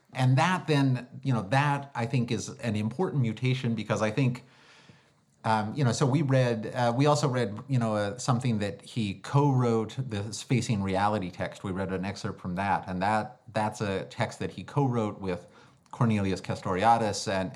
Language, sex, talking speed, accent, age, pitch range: English, male, 185 wpm, American, 30-49, 100-125 Hz